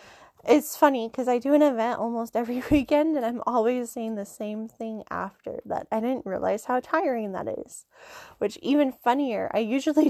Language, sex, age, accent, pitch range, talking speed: English, female, 10-29, American, 220-280 Hz, 185 wpm